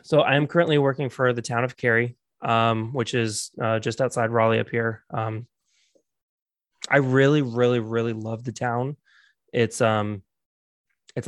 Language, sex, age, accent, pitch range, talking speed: English, male, 20-39, American, 115-130 Hz, 155 wpm